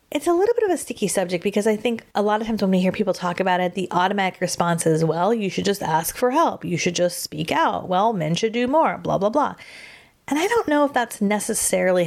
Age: 30-49